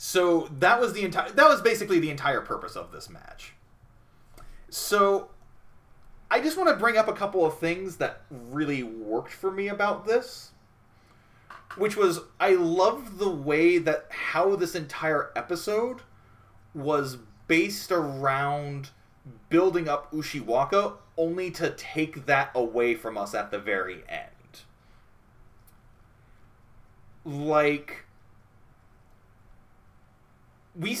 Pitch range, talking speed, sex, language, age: 125-185 Hz, 120 wpm, male, English, 30-49